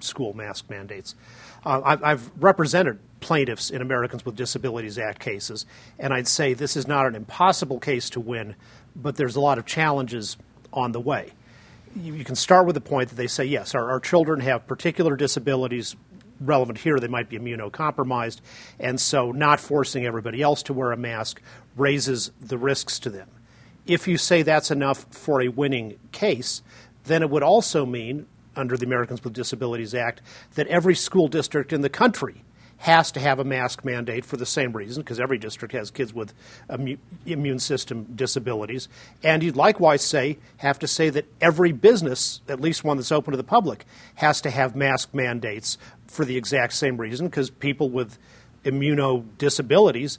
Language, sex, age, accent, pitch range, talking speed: English, male, 40-59, American, 120-150 Hz, 180 wpm